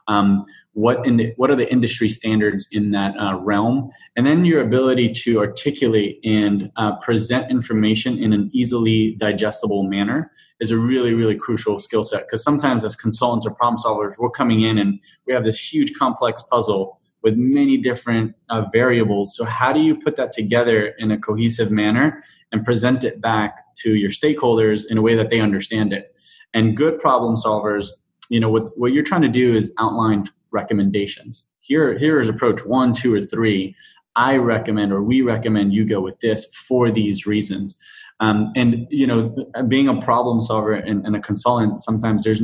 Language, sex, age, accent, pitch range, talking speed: English, male, 20-39, American, 105-120 Hz, 185 wpm